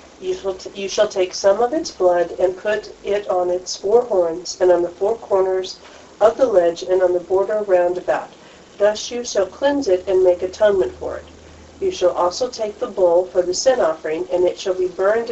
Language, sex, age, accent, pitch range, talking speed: English, female, 40-59, American, 175-215 Hz, 220 wpm